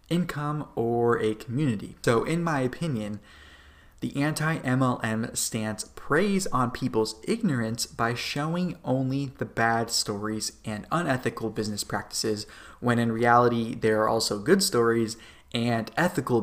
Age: 20-39